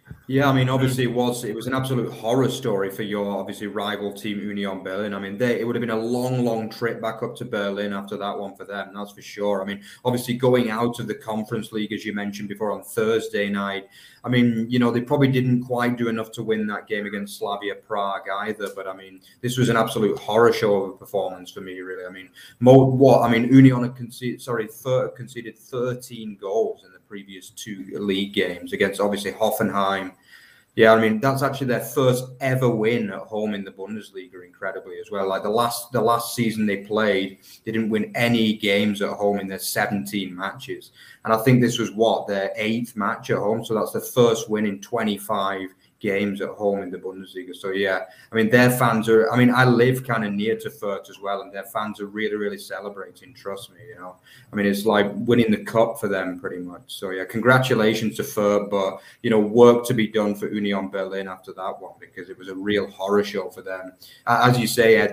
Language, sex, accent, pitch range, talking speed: English, male, British, 100-120 Hz, 225 wpm